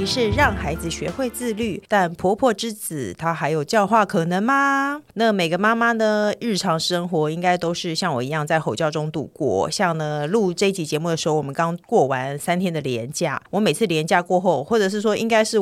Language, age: Chinese, 30-49